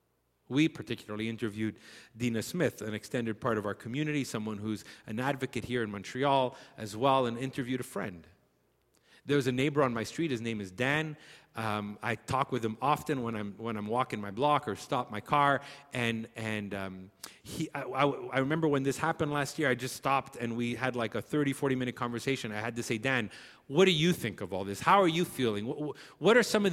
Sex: male